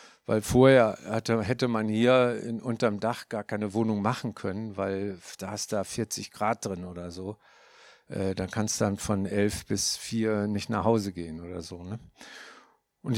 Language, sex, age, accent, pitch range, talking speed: German, male, 50-69, German, 110-160 Hz, 180 wpm